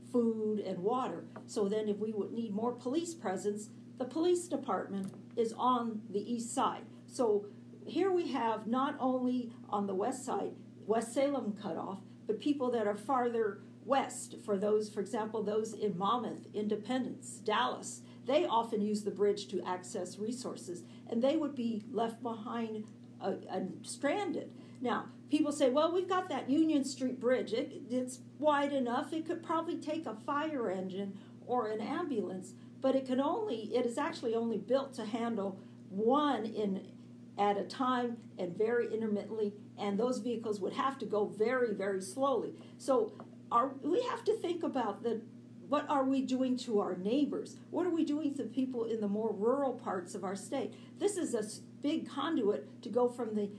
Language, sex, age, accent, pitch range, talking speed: English, female, 50-69, American, 210-270 Hz, 175 wpm